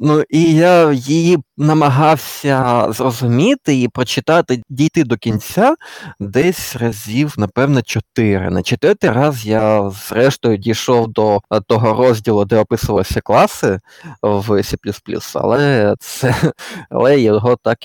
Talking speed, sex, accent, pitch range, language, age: 110 wpm, male, native, 110-145 Hz, Ukrainian, 20-39